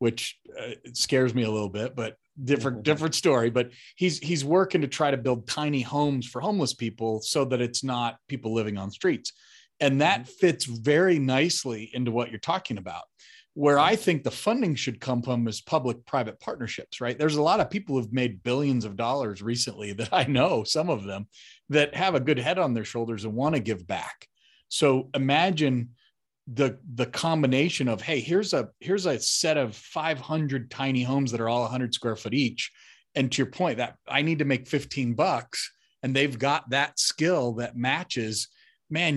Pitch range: 115-145 Hz